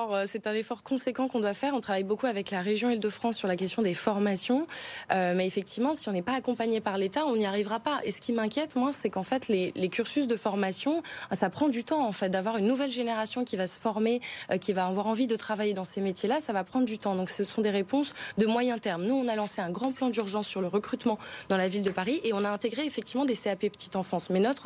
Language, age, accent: French, 20-39, French